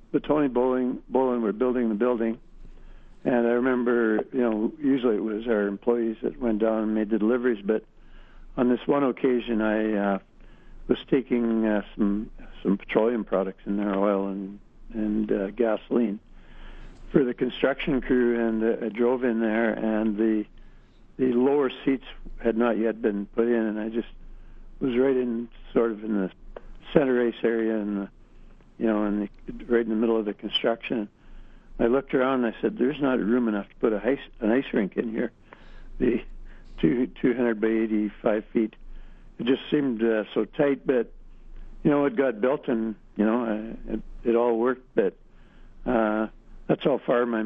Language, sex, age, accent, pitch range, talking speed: English, male, 60-79, American, 110-125 Hz, 185 wpm